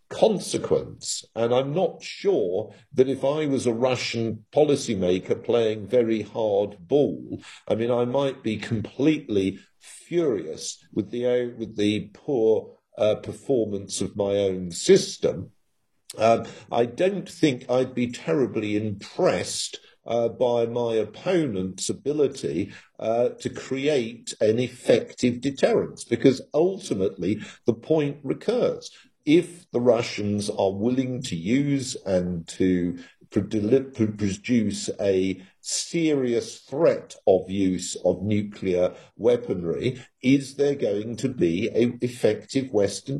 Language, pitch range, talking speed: English, 100-135 Hz, 115 wpm